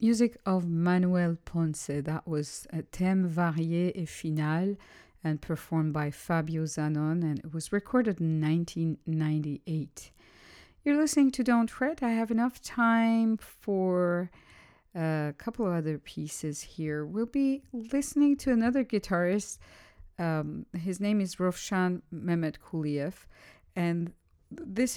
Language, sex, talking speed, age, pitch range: English, female, 125 wpm, 40-59, 155-190 Hz